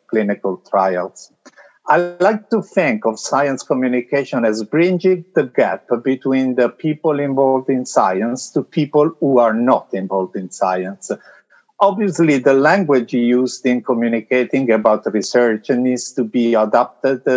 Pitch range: 110-150 Hz